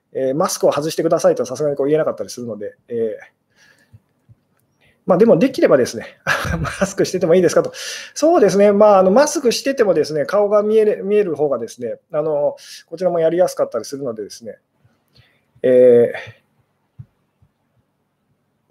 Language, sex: Japanese, male